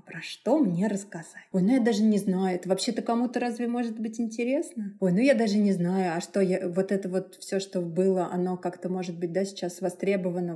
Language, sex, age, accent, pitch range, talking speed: Russian, female, 20-39, native, 180-195 Hz, 220 wpm